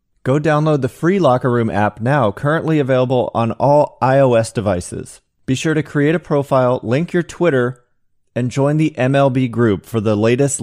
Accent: American